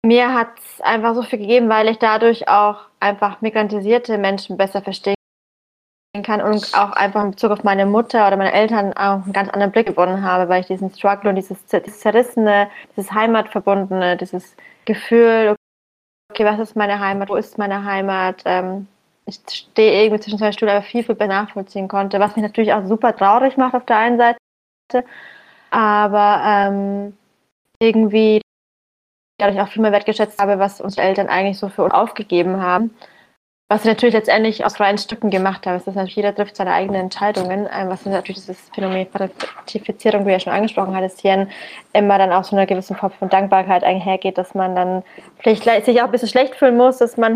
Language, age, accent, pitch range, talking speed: German, 20-39, German, 195-225 Hz, 195 wpm